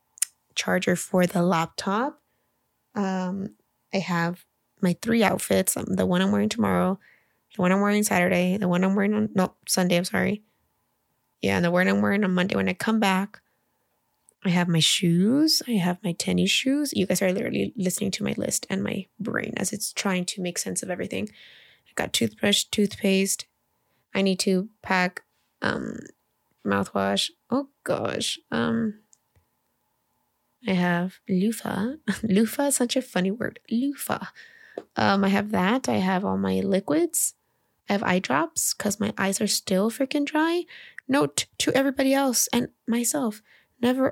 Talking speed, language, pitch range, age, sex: 165 wpm, English, 185-245 Hz, 20-39, female